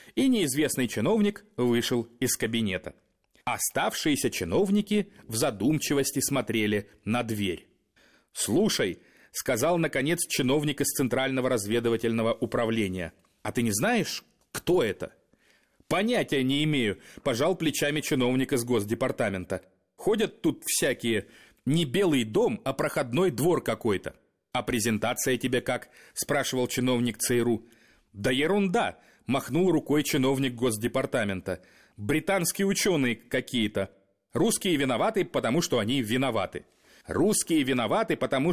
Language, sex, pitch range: Russian, male, 115-150 Hz